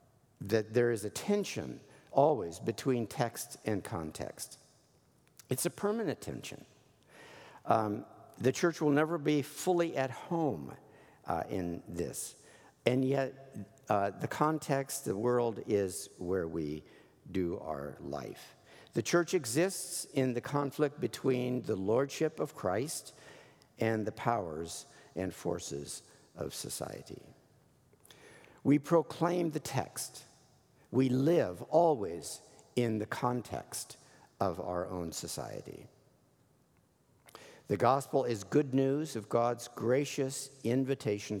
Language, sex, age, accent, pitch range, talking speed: English, male, 60-79, American, 105-150 Hz, 115 wpm